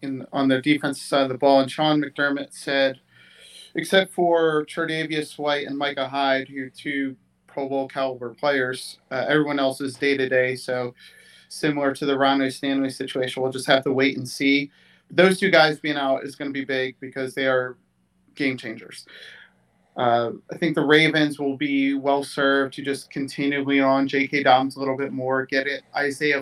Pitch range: 130-145 Hz